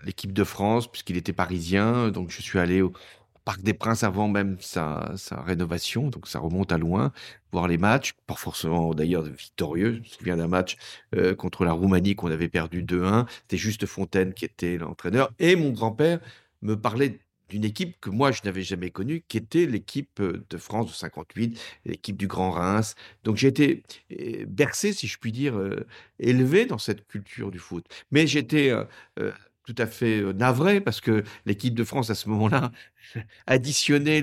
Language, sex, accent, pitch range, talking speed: French, male, French, 95-125 Hz, 185 wpm